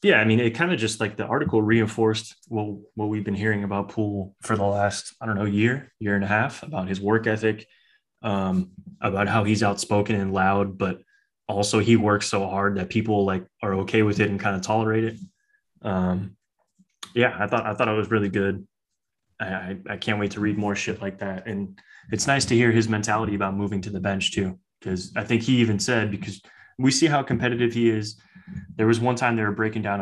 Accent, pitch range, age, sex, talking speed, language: American, 100-115 Hz, 20-39, male, 225 wpm, English